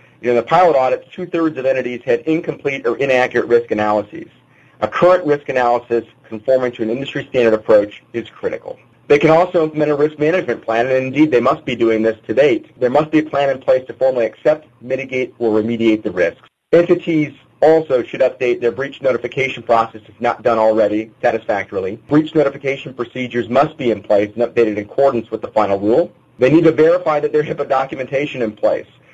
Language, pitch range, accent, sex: English, 120-150 Hz, American, male